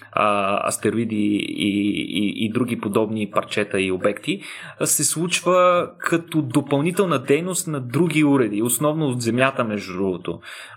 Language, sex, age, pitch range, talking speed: Bulgarian, male, 20-39, 115-150 Hz, 130 wpm